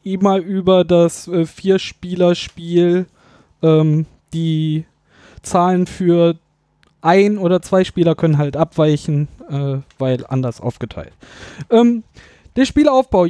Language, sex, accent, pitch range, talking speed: German, male, German, 170-215 Hz, 100 wpm